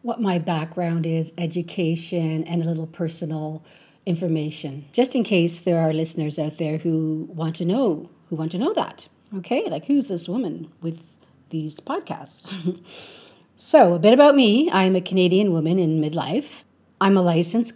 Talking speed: 165 wpm